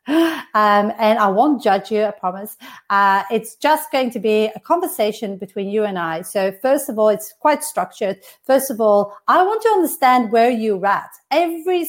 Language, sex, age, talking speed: English, female, 40-59, 190 wpm